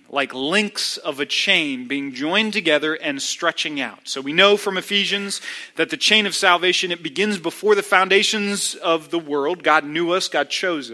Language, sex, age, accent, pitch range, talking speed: English, male, 40-59, American, 140-210 Hz, 185 wpm